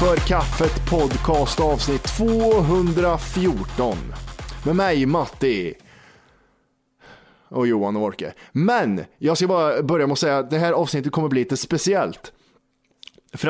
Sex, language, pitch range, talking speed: male, Swedish, 125-175 Hz, 130 wpm